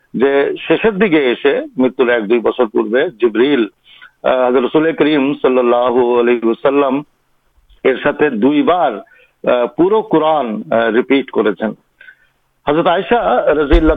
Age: 50-69